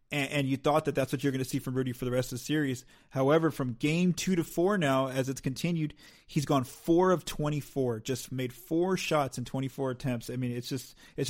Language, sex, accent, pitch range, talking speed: English, male, American, 125-150 Hz, 240 wpm